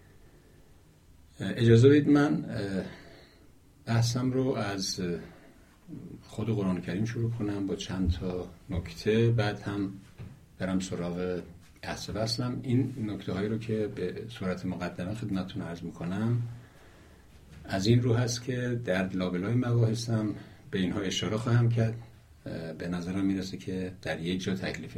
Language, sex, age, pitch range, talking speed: Persian, male, 50-69, 85-110 Hz, 130 wpm